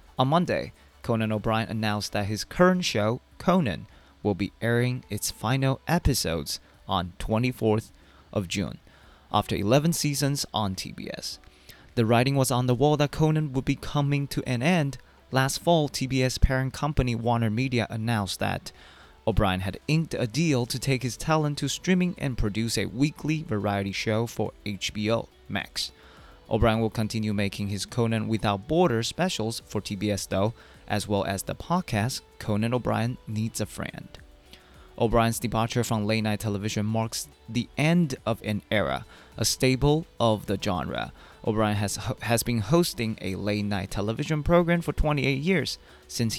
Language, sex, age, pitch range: Chinese, male, 20-39, 100-130 Hz